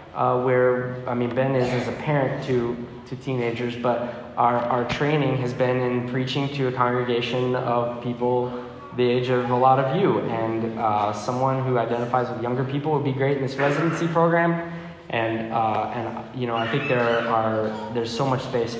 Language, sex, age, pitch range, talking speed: English, male, 10-29, 120-145 Hz, 190 wpm